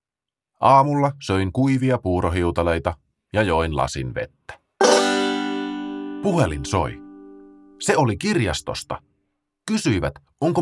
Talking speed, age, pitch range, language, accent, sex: 85 wpm, 30-49, 85-135 Hz, Finnish, native, male